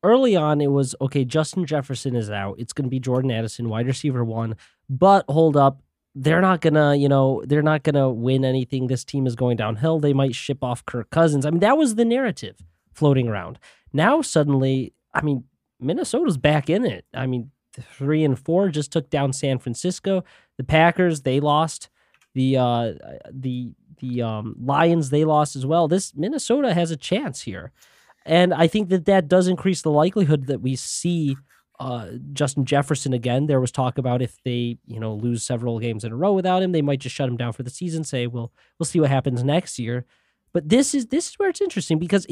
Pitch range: 125-165 Hz